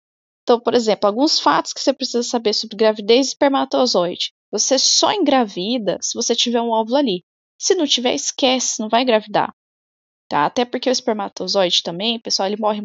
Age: 10-29